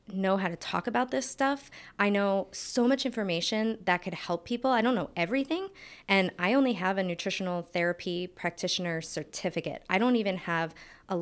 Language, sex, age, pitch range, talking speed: English, female, 20-39, 180-215 Hz, 180 wpm